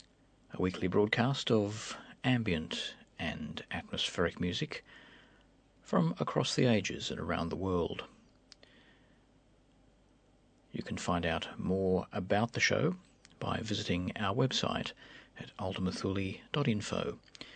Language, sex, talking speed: English, male, 105 wpm